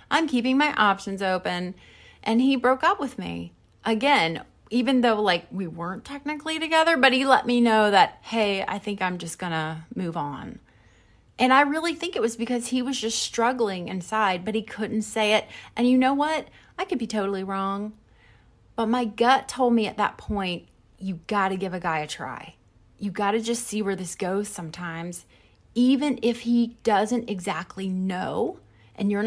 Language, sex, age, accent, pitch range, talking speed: English, female, 30-49, American, 190-245 Hz, 190 wpm